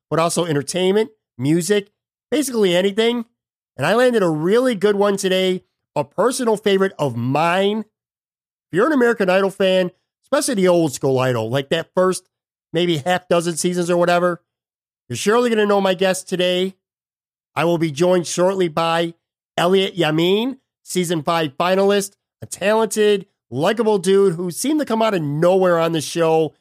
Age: 50-69